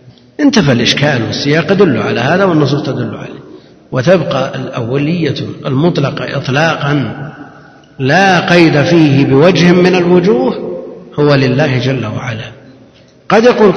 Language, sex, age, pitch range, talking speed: Arabic, male, 50-69, 125-160 Hz, 110 wpm